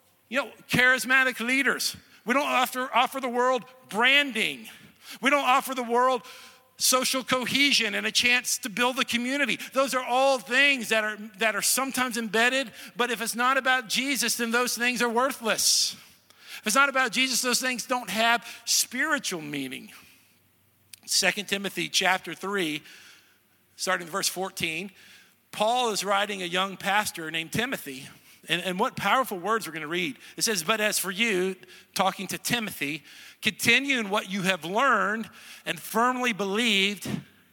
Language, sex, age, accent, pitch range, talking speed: English, male, 50-69, American, 185-250 Hz, 160 wpm